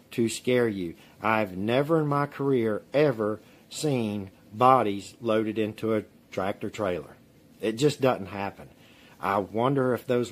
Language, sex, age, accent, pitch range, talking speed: English, male, 50-69, American, 105-130 Hz, 140 wpm